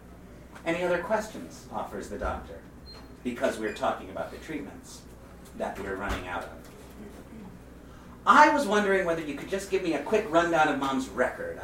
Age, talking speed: 30-49, 165 wpm